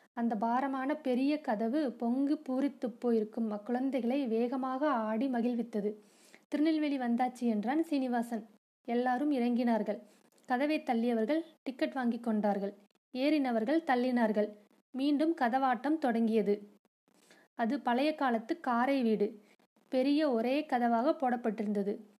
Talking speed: 95 wpm